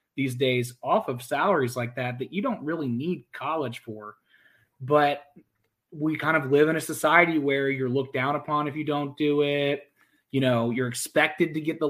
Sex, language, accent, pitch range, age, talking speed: male, English, American, 130-150 Hz, 20-39, 195 wpm